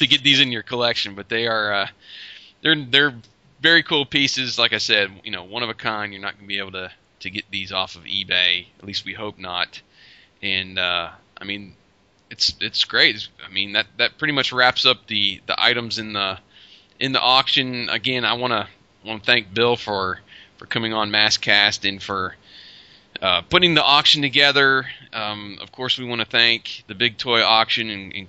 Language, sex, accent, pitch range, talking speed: English, male, American, 100-115 Hz, 210 wpm